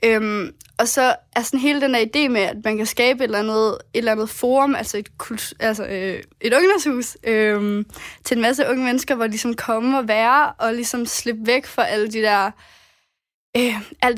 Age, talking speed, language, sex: 20-39, 200 wpm, Danish, female